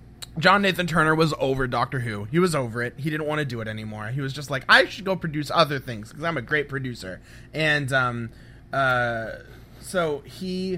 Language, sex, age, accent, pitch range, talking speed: English, male, 30-49, American, 125-170 Hz, 210 wpm